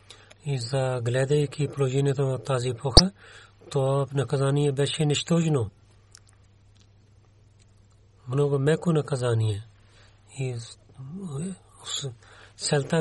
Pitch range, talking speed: 110-145 Hz, 70 wpm